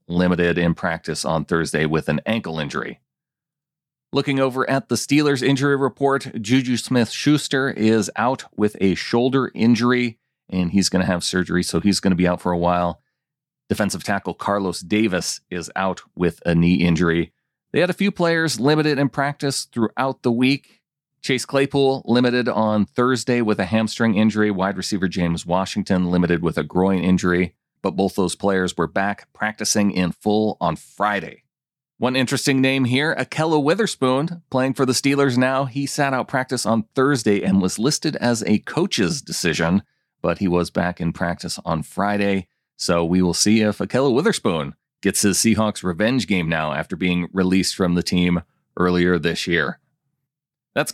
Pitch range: 95-140 Hz